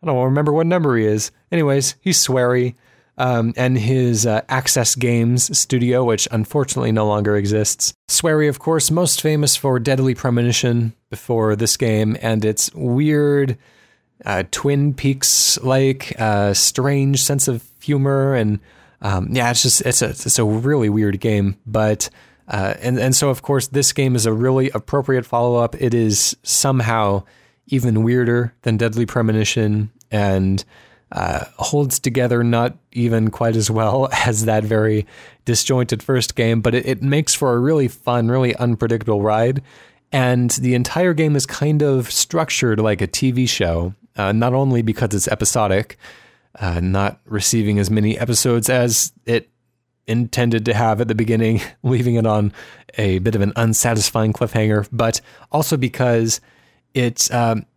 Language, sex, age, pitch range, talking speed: English, male, 20-39, 110-130 Hz, 160 wpm